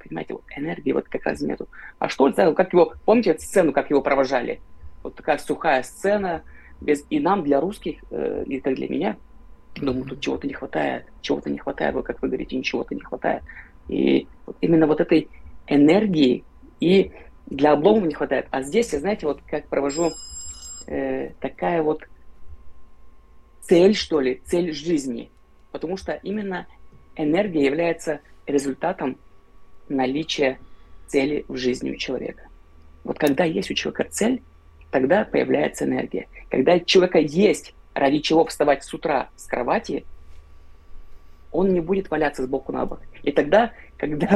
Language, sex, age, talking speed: Russian, female, 30-49, 155 wpm